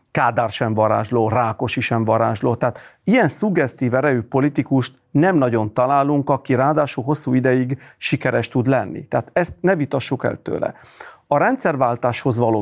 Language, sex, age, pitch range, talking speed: Hungarian, male, 40-59, 125-155 Hz, 145 wpm